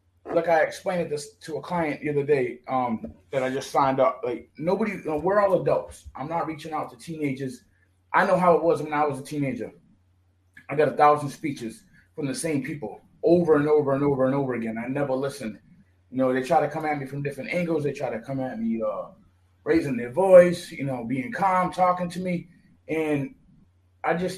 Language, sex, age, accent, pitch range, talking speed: English, male, 20-39, American, 125-165 Hz, 220 wpm